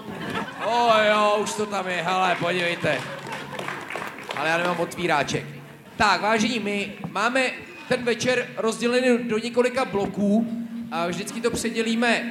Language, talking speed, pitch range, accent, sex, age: Czech, 130 wpm, 170-210 Hz, native, male, 30-49